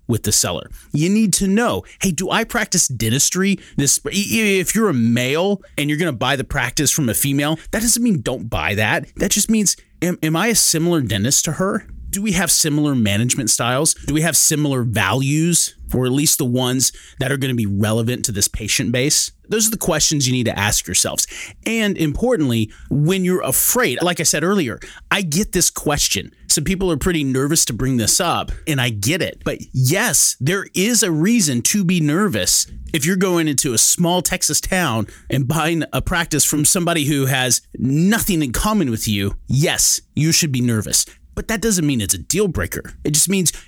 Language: English